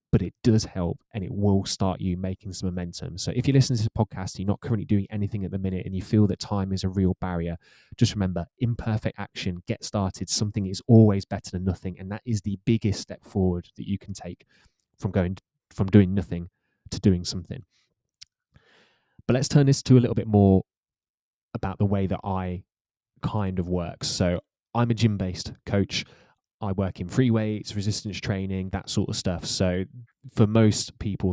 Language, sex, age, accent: English, male, 20-39, British